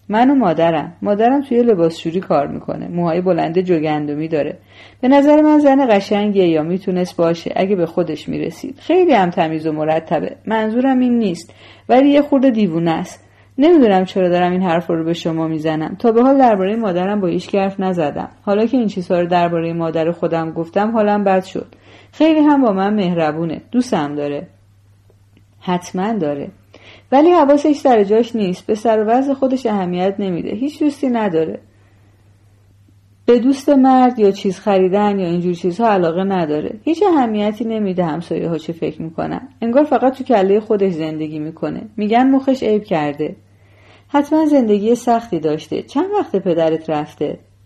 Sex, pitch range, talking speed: female, 160-235 Hz, 160 wpm